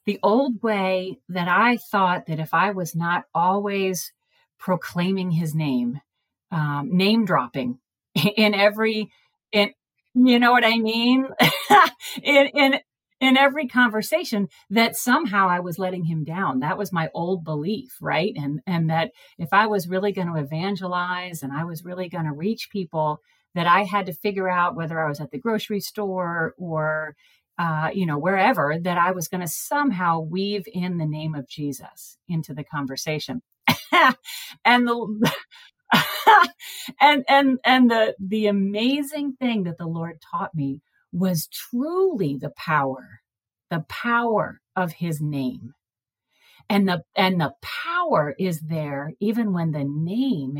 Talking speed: 155 wpm